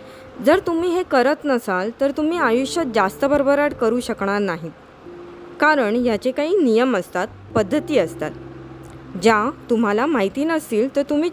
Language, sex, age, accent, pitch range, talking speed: Marathi, female, 20-39, native, 210-285 Hz, 140 wpm